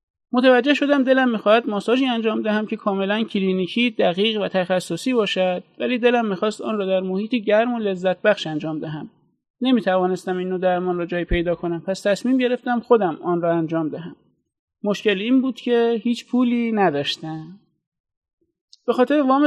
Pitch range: 185-230 Hz